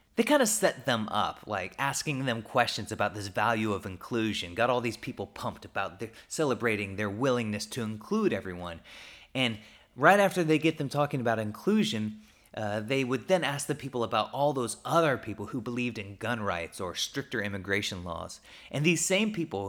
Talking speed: 190 wpm